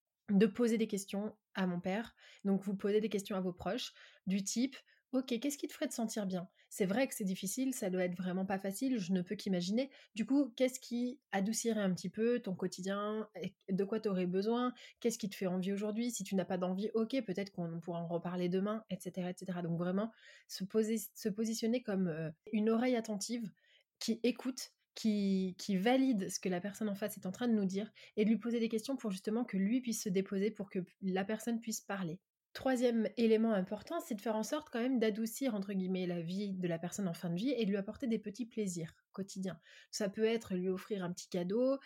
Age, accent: 20-39, French